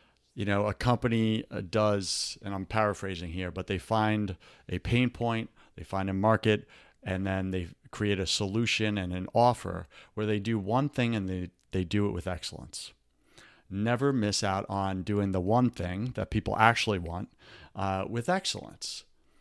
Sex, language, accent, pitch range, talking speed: male, English, American, 95-120 Hz, 170 wpm